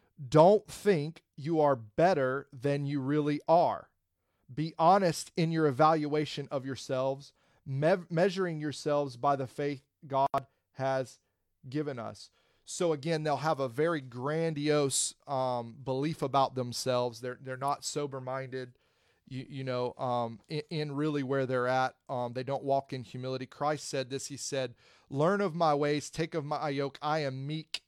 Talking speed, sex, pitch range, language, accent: 155 wpm, male, 130-160 Hz, English, American